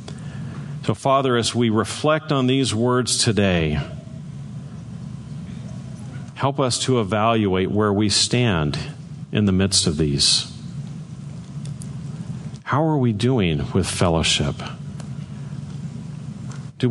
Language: English